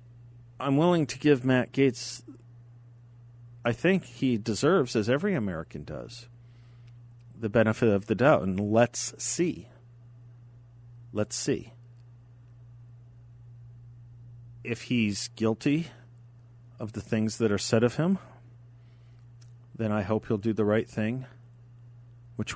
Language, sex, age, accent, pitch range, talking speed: English, male, 40-59, American, 110-120 Hz, 115 wpm